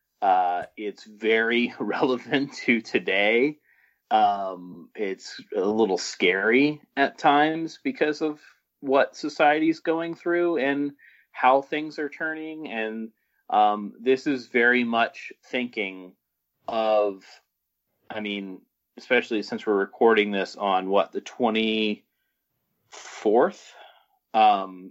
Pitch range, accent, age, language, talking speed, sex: 105-140 Hz, American, 30-49, English, 105 wpm, male